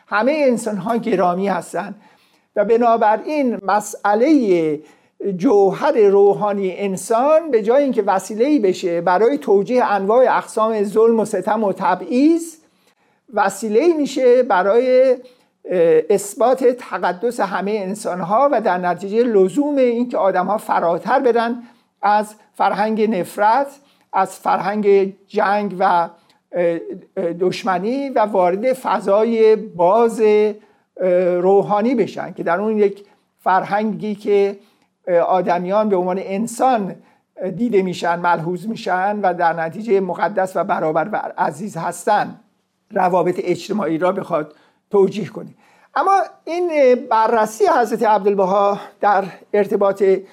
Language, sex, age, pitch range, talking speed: Persian, male, 50-69, 185-230 Hz, 105 wpm